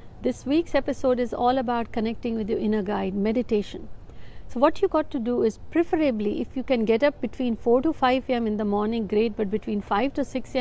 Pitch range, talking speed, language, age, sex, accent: 210-275 Hz, 220 wpm, Hindi, 60-79, female, native